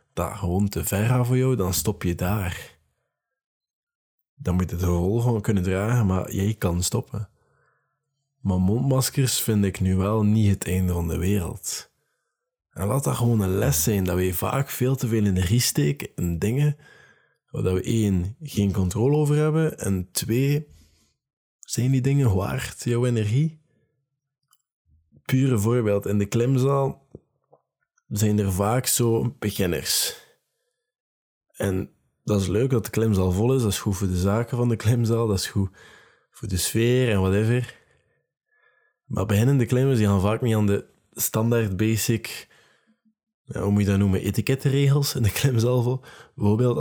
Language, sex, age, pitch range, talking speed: Dutch, male, 20-39, 100-130 Hz, 160 wpm